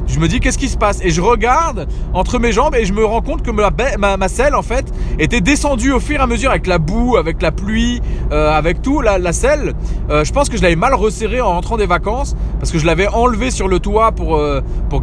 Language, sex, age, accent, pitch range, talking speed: French, male, 30-49, French, 170-240 Hz, 270 wpm